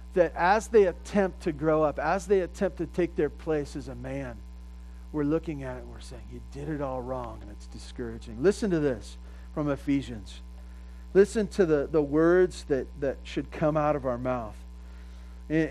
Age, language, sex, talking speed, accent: 40-59, English, male, 195 wpm, American